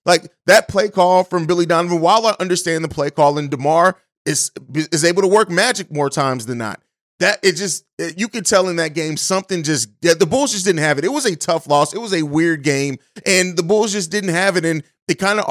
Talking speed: 250 wpm